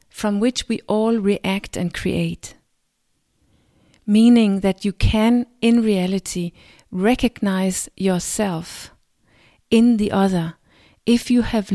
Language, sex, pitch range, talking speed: English, female, 180-220 Hz, 105 wpm